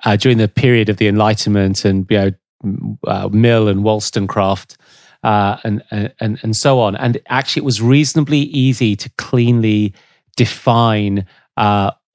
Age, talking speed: 30-49, 150 wpm